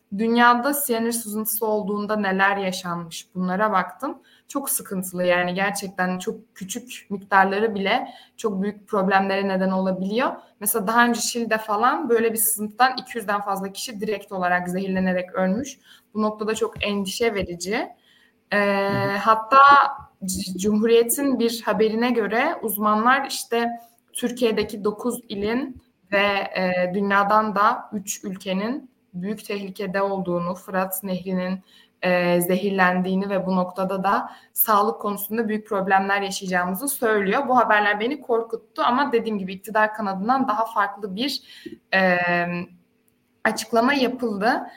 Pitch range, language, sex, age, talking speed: 195-235 Hz, Turkish, female, 20-39, 115 wpm